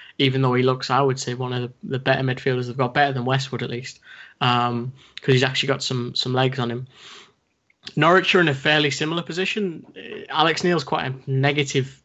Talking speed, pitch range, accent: 205 wpm, 130-145 Hz, British